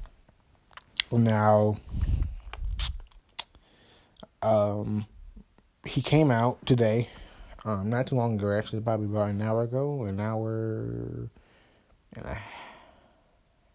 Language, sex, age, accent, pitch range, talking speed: English, male, 20-39, American, 105-120 Hz, 100 wpm